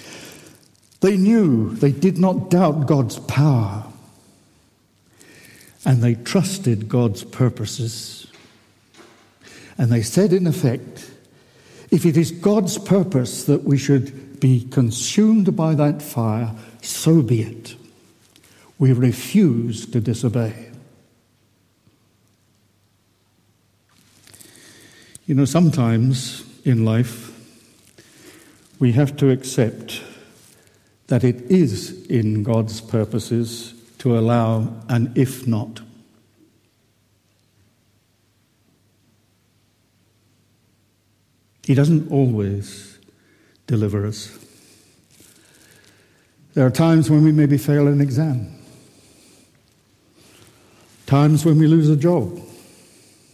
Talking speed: 85 wpm